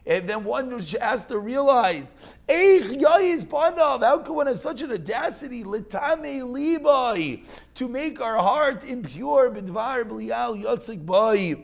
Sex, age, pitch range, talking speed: male, 30-49, 150-220 Hz, 115 wpm